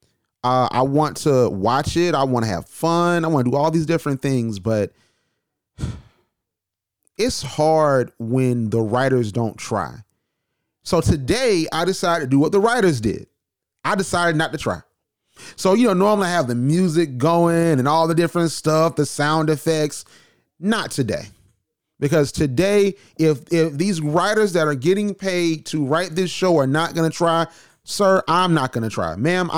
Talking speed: 175 wpm